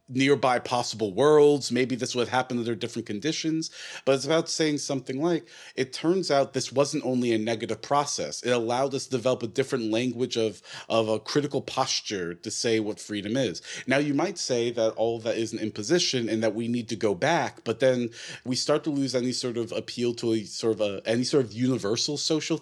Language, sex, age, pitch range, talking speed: English, male, 30-49, 110-135 Hz, 215 wpm